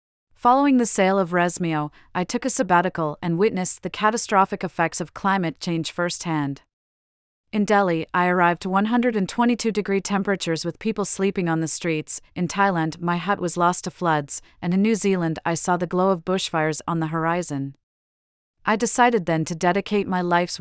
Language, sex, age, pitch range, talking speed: English, female, 40-59, 165-195 Hz, 170 wpm